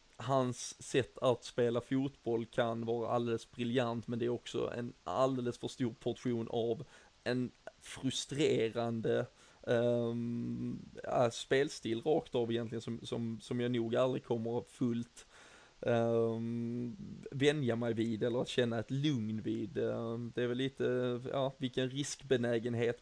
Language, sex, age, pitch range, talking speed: Swedish, male, 20-39, 115-125 Hz, 125 wpm